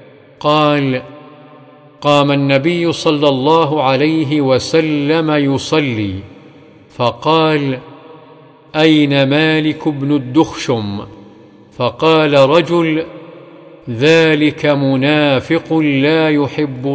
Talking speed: 65 wpm